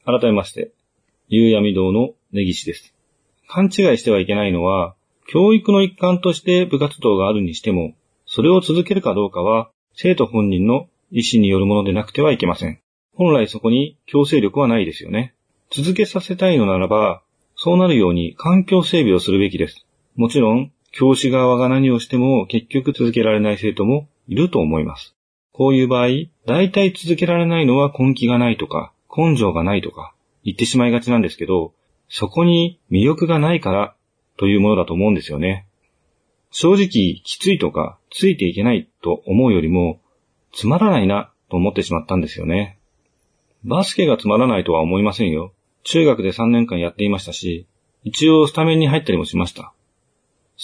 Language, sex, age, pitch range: Japanese, male, 40-59, 100-155 Hz